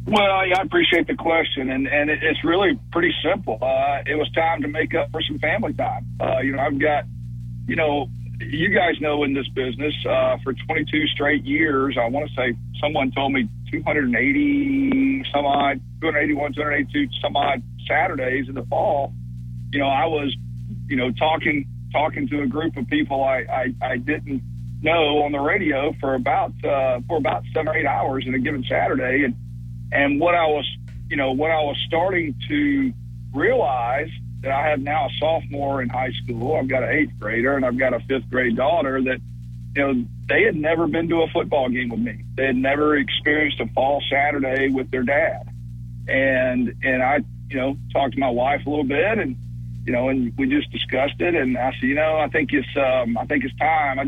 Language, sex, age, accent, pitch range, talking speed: English, male, 50-69, American, 120-150 Hz, 205 wpm